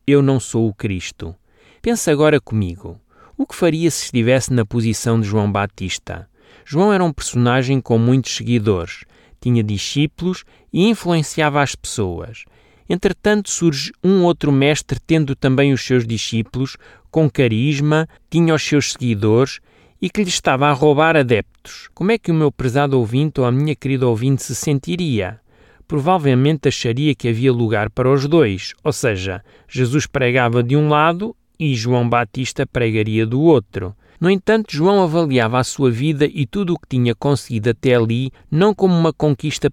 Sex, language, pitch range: male, Portuguese, 115-150 Hz